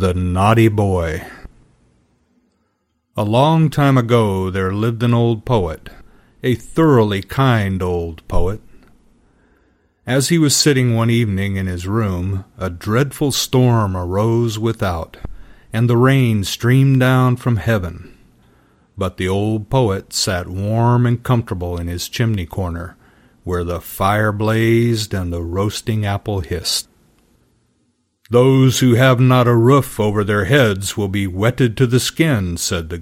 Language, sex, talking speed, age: English, male, 140 wpm, 40-59